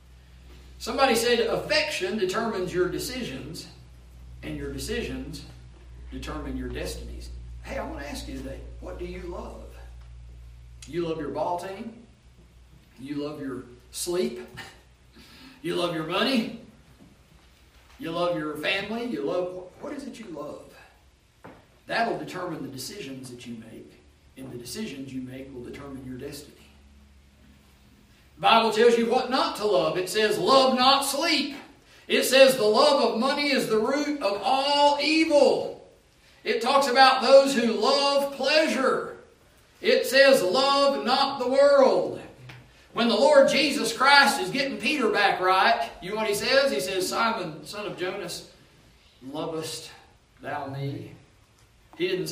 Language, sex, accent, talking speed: English, male, American, 145 wpm